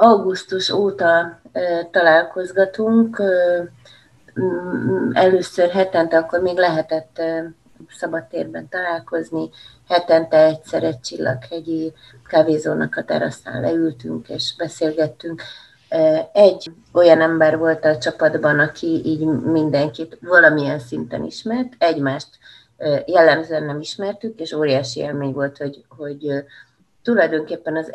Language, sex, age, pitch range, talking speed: Hungarian, female, 30-49, 130-170 Hz, 105 wpm